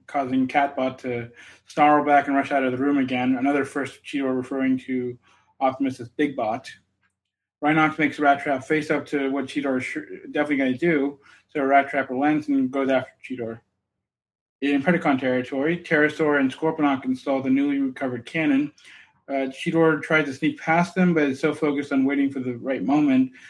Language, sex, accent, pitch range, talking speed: English, male, American, 130-150 Hz, 180 wpm